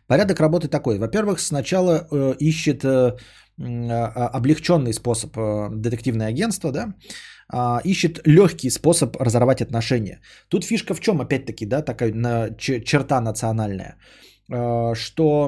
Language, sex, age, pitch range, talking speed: Bulgarian, male, 20-39, 115-165 Hz, 100 wpm